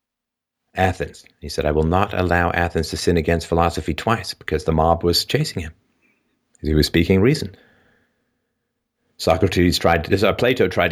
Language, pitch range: English, 80-105 Hz